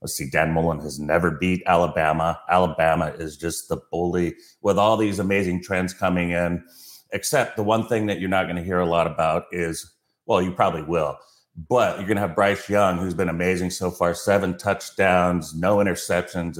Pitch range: 90-105 Hz